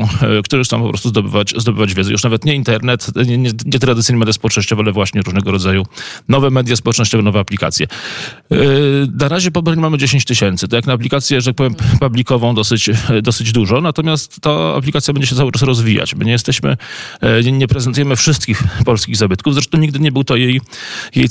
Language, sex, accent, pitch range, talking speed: Polish, male, native, 105-140 Hz, 185 wpm